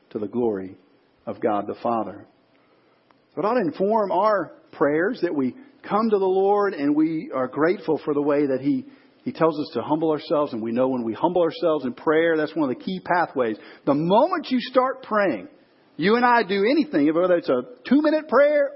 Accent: American